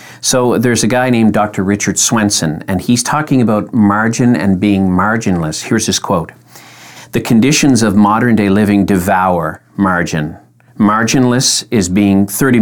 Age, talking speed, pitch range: 50-69, 145 wpm, 90-110 Hz